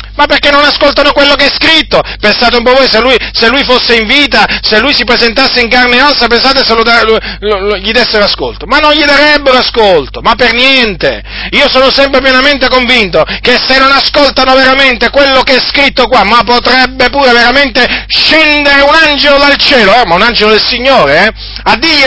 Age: 40-59